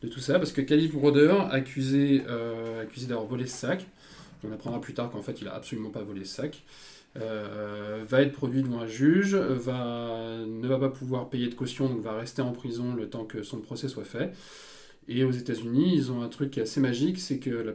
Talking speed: 230 wpm